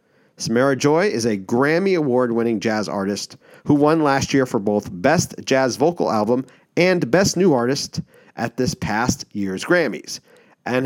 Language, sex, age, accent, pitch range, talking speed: English, male, 40-59, American, 115-160 Hz, 155 wpm